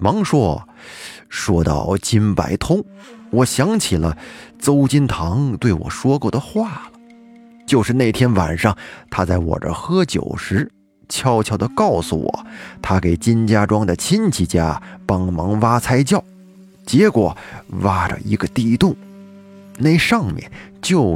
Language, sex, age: Chinese, male, 20-39